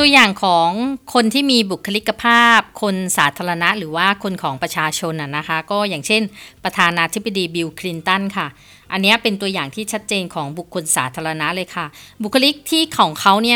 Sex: female